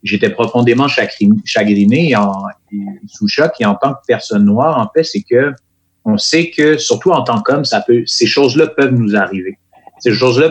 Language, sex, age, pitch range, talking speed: French, male, 50-69, 110-155 Hz, 190 wpm